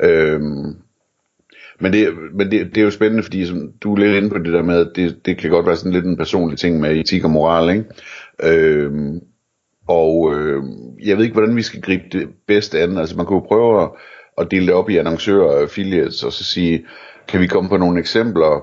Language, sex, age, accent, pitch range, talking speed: Danish, male, 60-79, native, 80-110 Hz, 220 wpm